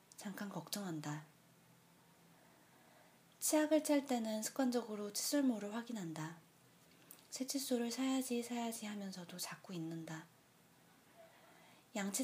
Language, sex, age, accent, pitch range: Korean, female, 20-39, native, 170-230 Hz